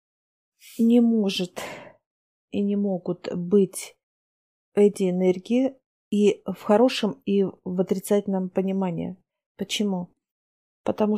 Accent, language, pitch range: native, Russian, 190-220 Hz